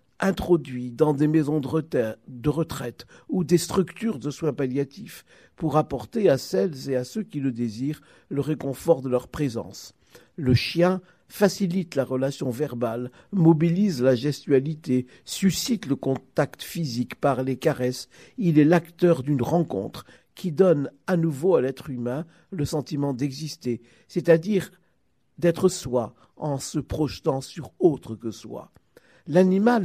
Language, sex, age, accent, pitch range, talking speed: French, male, 50-69, French, 130-170 Hz, 140 wpm